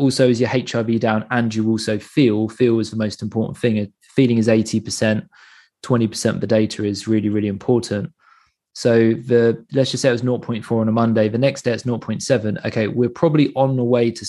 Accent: British